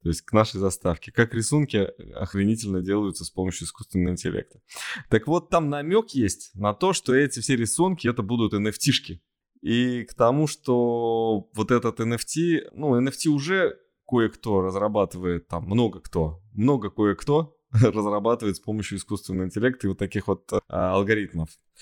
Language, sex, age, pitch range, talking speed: Russian, male, 20-39, 90-115 Hz, 150 wpm